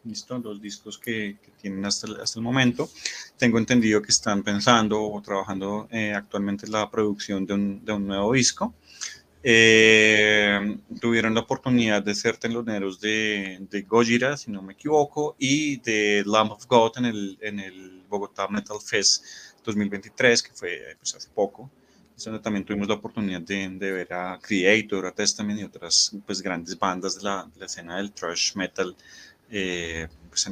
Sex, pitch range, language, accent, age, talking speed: male, 95-110 Hz, Spanish, Colombian, 30-49, 175 wpm